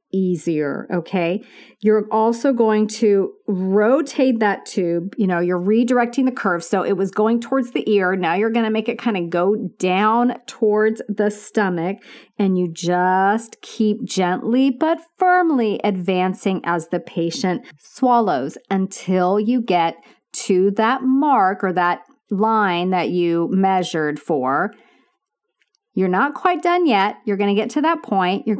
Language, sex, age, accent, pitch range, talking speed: English, female, 40-59, American, 185-250 Hz, 155 wpm